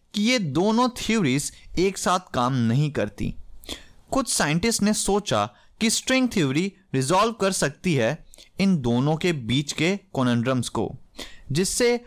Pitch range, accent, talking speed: 130-220 Hz, native, 140 wpm